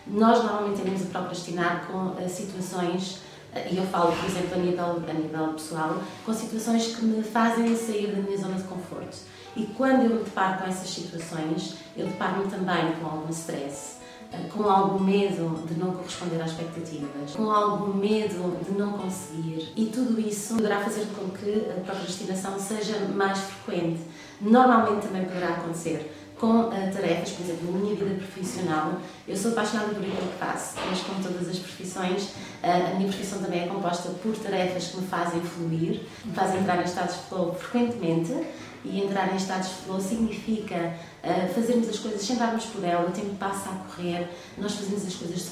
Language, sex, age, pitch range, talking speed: Portuguese, female, 20-39, 175-210 Hz, 175 wpm